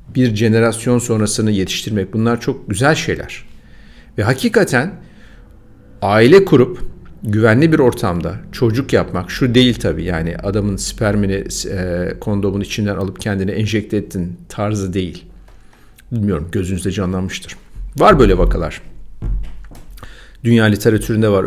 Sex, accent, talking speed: male, native, 115 wpm